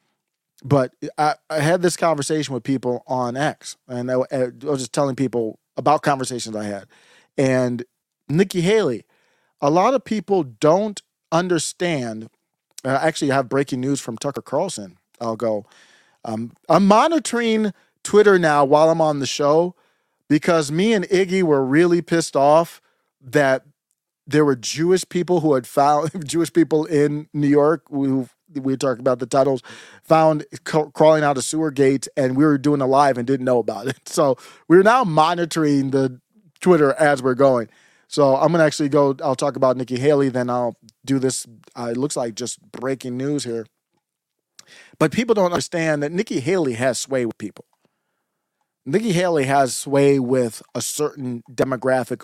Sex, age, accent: male, 40-59, American